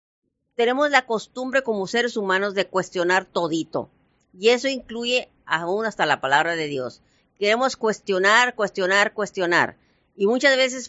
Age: 50-69